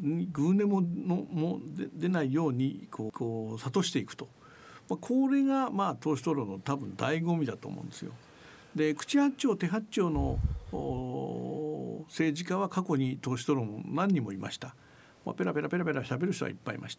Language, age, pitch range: Japanese, 60-79, 145-230 Hz